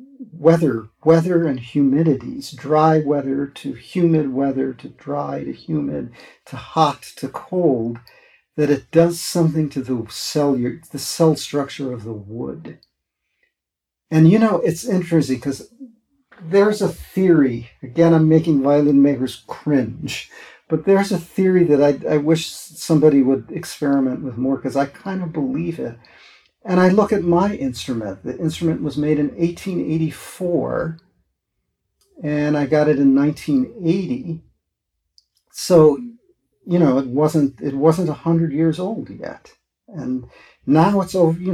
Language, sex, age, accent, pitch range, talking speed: English, male, 50-69, American, 140-180 Hz, 140 wpm